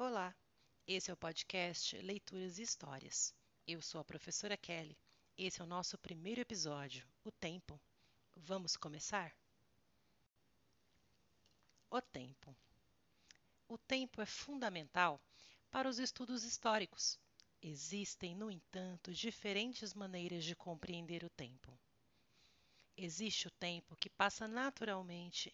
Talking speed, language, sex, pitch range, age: 115 wpm, Portuguese, female, 165-215 Hz, 40-59